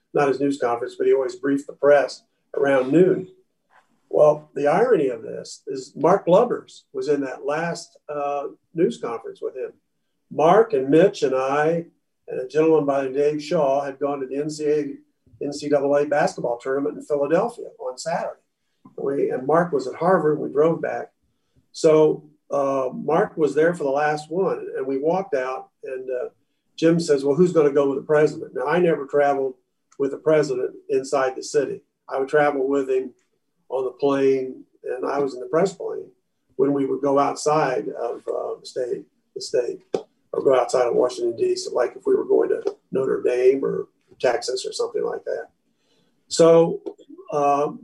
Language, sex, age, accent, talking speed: English, male, 50-69, American, 185 wpm